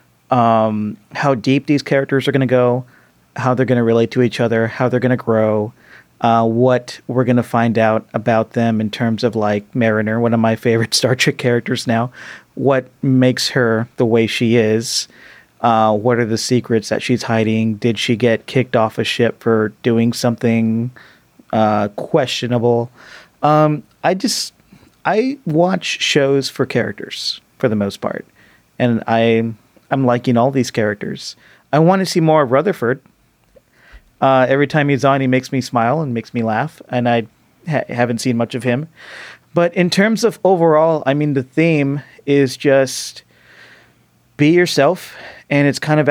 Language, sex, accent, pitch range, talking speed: English, male, American, 115-135 Hz, 175 wpm